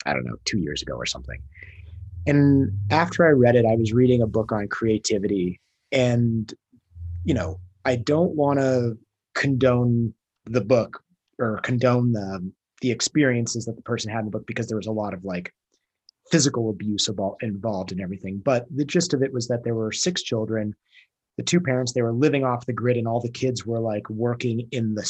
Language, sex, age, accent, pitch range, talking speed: English, male, 30-49, American, 110-135 Hz, 200 wpm